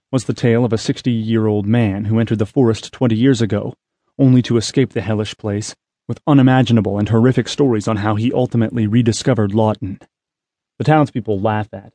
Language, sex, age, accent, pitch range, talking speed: English, male, 30-49, American, 110-125 Hz, 175 wpm